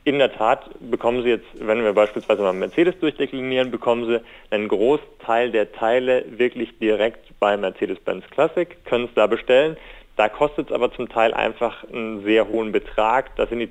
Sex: male